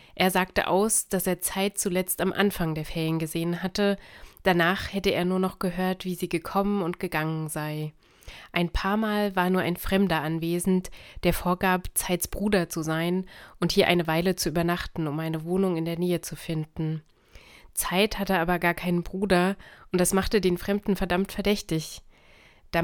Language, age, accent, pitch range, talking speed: German, 30-49, German, 170-195 Hz, 175 wpm